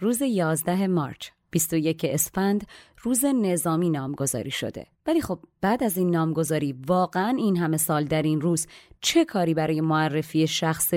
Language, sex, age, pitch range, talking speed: Persian, female, 30-49, 160-220 Hz, 150 wpm